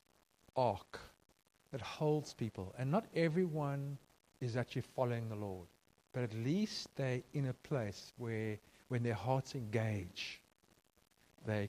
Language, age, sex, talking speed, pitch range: English, 50-69, male, 130 wpm, 110-160 Hz